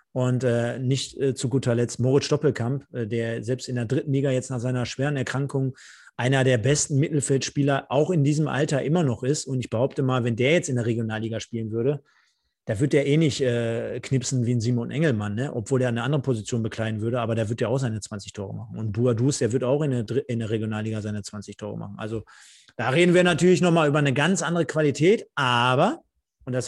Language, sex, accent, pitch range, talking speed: German, male, German, 125-155 Hz, 230 wpm